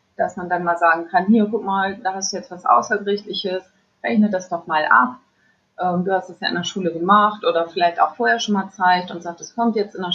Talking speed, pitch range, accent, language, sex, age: 250 wpm, 175-205 Hz, German, German, female, 30-49